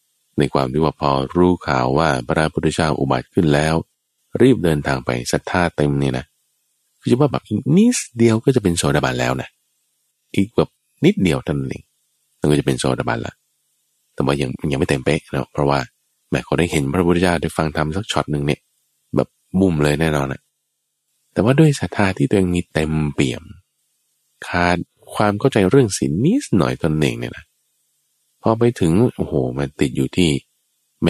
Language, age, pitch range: Thai, 20-39, 70-105 Hz